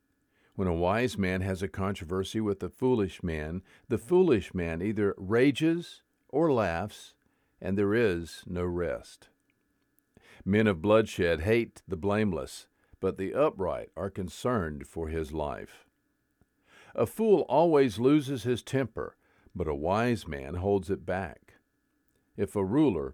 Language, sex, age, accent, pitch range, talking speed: English, male, 50-69, American, 95-125 Hz, 135 wpm